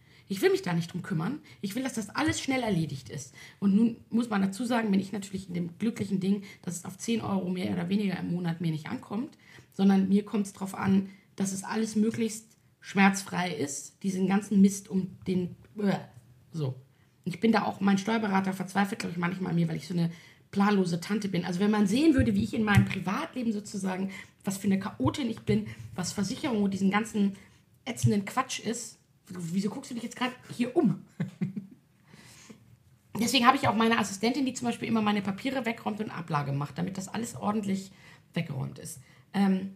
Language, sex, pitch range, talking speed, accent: German, female, 180-220 Hz, 200 wpm, German